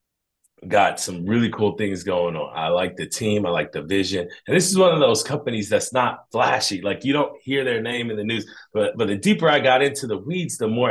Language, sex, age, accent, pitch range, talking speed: English, male, 30-49, American, 100-140 Hz, 250 wpm